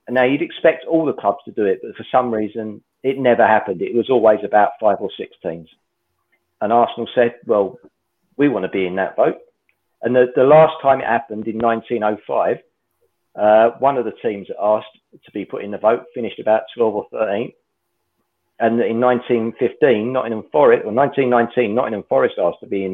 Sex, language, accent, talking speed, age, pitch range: male, English, British, 195 wpm, 40-59, 105-145 Hz